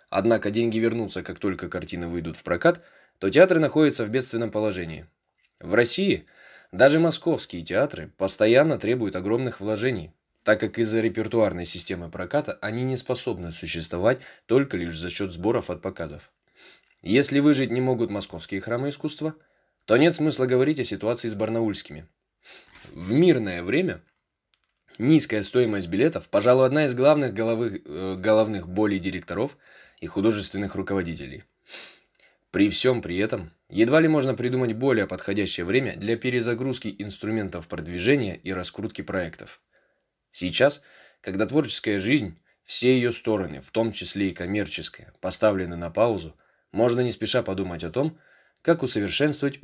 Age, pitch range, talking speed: 20-39, 90-125 Hz, 135 wpm